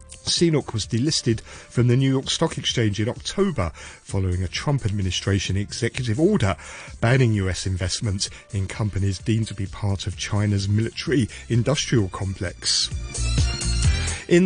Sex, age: male, 40-59